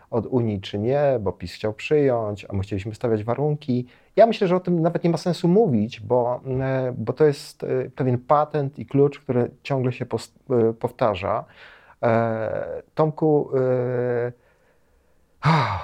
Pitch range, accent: 110-140 Hz, native